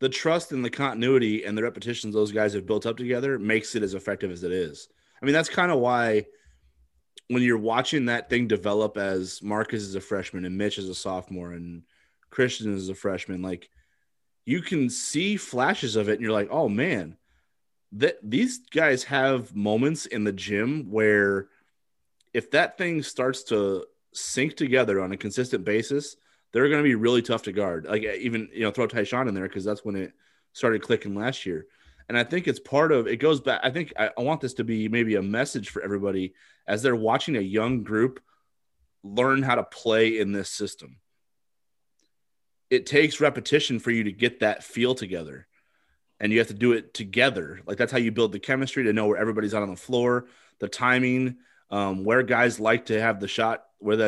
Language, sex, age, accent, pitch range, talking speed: English, male, 30-49, American, 105-130 Hz, 205 wpm